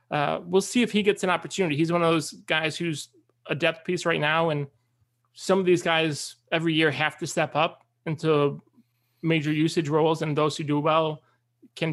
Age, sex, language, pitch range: 20-39, male, English, 150-180 Hz